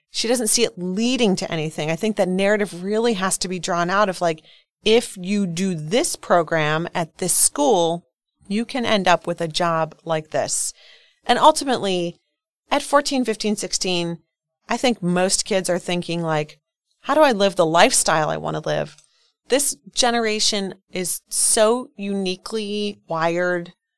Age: 30-49